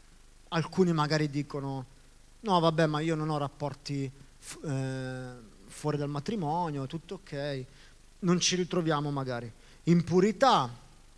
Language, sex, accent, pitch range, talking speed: Italian, male, native, 130-175 Hz, 120 wpm